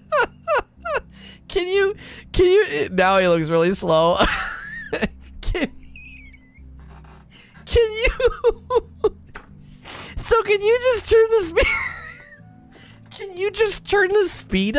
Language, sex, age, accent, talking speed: English, male, 20-39, American, 100 wpm